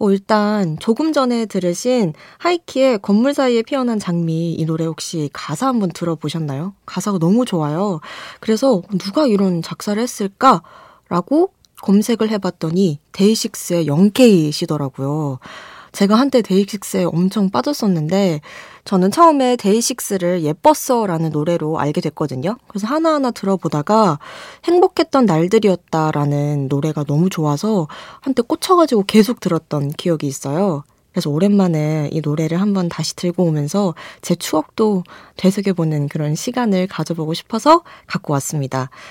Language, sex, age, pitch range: Korean, female, 20-39, 160-225 Hz